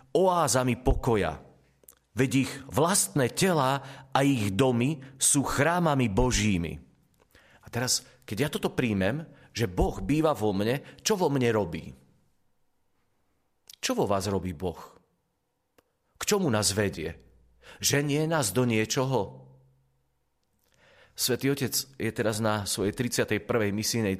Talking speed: 120 wpm